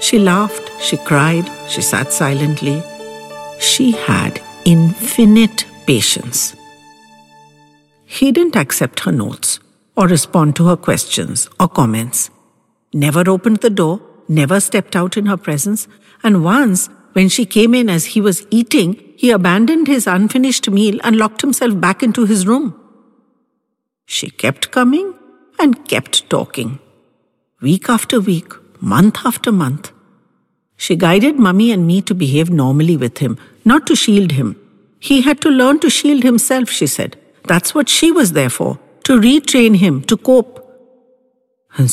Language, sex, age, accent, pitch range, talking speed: English, female, 60-79, Indian, 160-245 Hz, 145 wpm